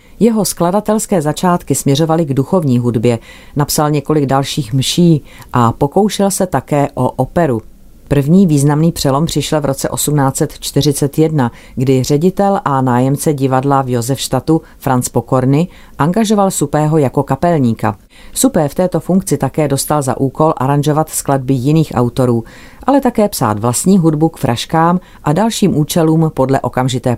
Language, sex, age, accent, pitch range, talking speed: Czech, female, 40-59, native, 130-165 Hz, 135 wpm